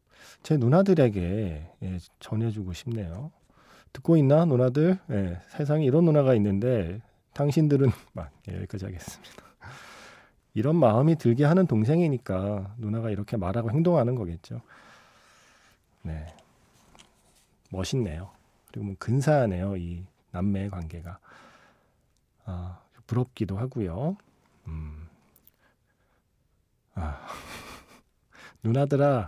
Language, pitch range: Korean, 95-145 Hz